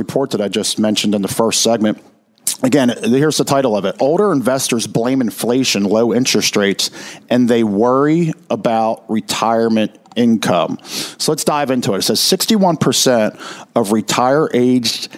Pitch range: 110-145 Hz